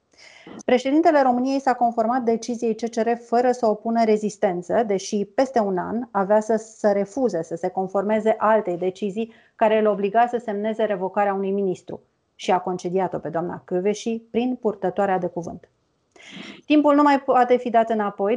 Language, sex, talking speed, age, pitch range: Romanian, female, 155 wpm, 30-49, 190-230 Hz